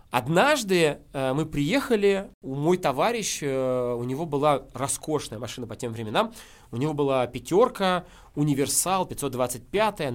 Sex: male